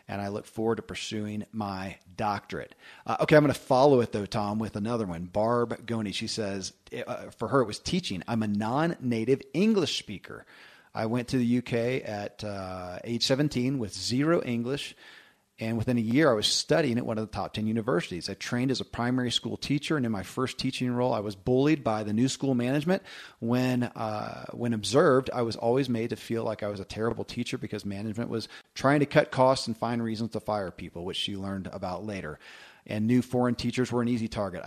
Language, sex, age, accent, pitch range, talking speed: English, male, 40-59, American, 105-130 Hz, 215 wpm